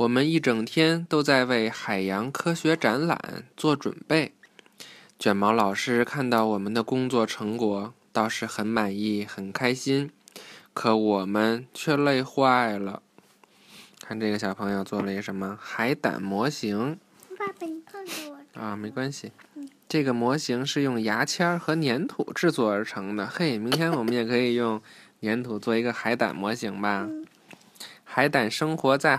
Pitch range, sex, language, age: 105-145 Hz, male, Chinese, 20-39